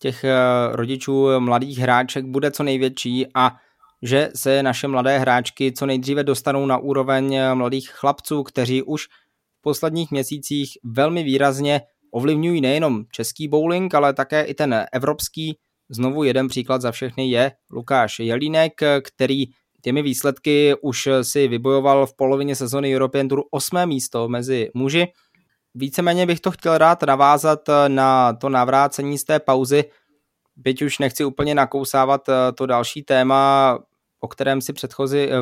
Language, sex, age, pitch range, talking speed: Czech, male, 20-39, 130-145 Hz, 140 wpm